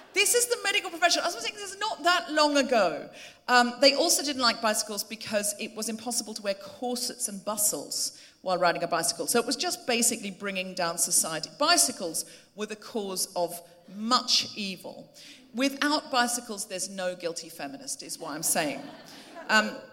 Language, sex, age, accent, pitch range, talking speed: English, female, 40-59, British, 190-270 Hz, 180 wpm